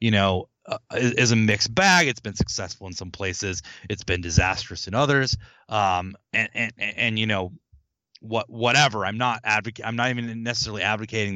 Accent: American